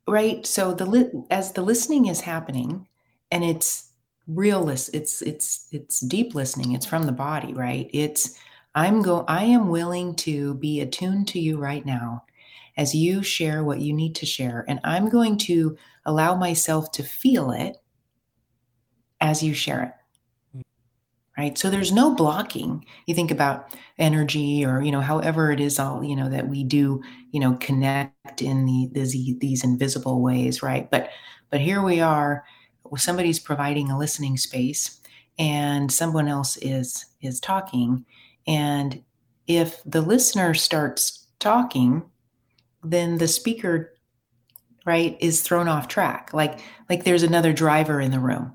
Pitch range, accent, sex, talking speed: 130-165 Hz, American, female, 155 wpm